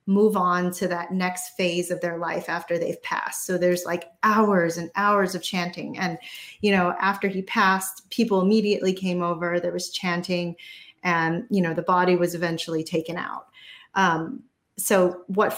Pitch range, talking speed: 180-215 Hz, 175 wpm